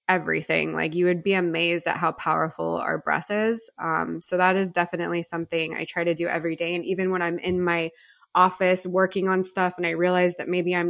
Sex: female